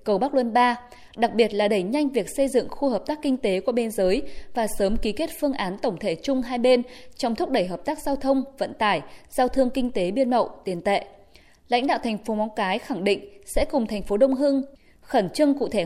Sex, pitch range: female, 200-270 Hz